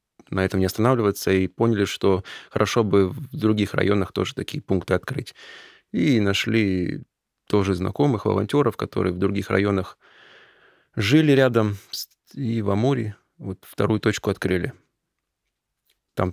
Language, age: Russian, 20-39